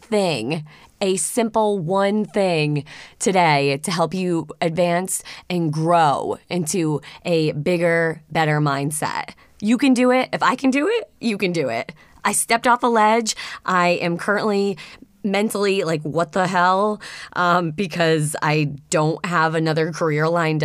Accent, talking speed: American, 150 wpm